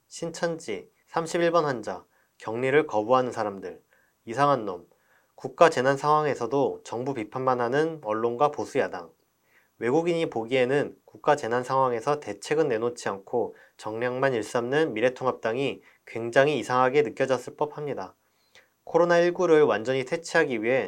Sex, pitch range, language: male, 115-160 Hz, Korean